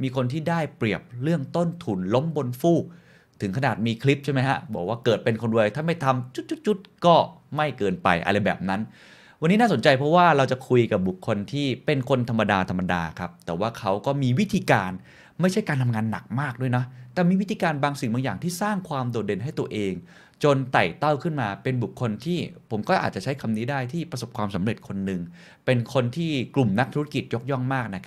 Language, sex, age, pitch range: Thai, male, 20-39, 110-150 Hz